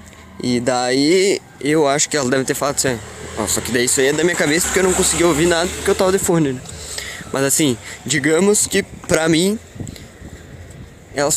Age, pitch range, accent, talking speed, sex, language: 20-39, 145-210 Hz, Brazilian, 205 wpm, male, Portuguese